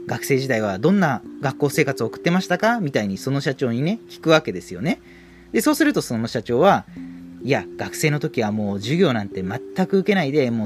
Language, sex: Japanese, male